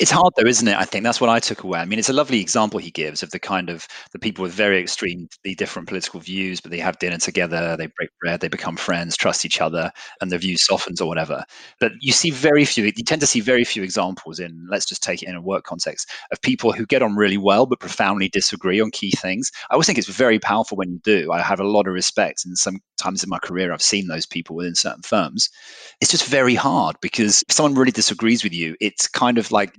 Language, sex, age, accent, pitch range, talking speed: English, male, 30-49, British, 90-120 Hz, 260 wpm